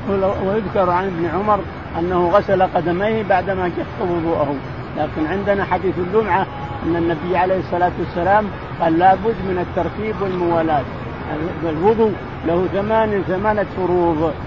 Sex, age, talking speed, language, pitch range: male, 50-69, 125 wpm, Arabic, 170-200 Hz